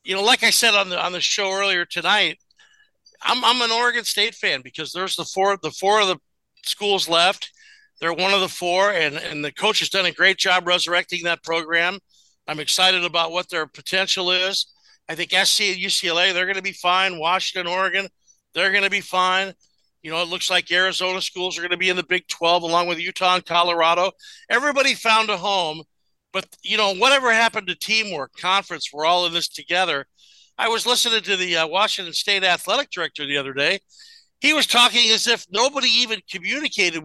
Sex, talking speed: male, 205 wpm